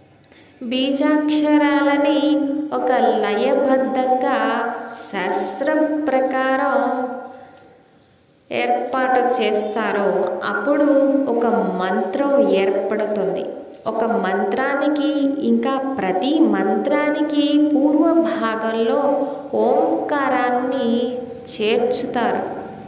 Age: 20-39